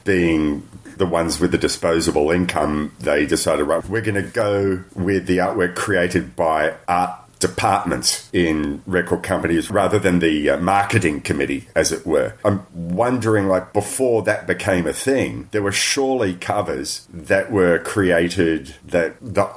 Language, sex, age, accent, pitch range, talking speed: English, male, 40-59, Australian, 85-100 Hz, 150 wpm